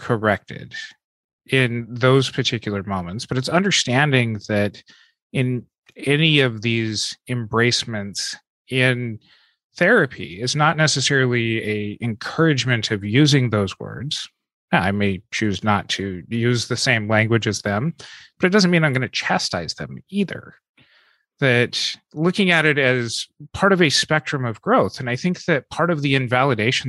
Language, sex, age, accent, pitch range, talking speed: English, male, 30-49, American, 115-155 Hz, 145 wpm